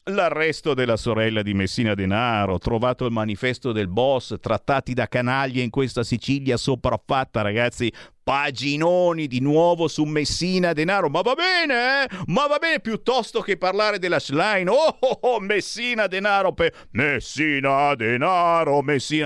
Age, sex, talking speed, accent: 50-69, male, 145 wpm, native